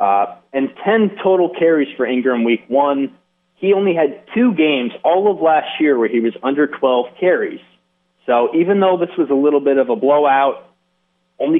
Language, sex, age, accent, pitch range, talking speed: English, male, 30-49, American, 130-190 Hz, 185 wpm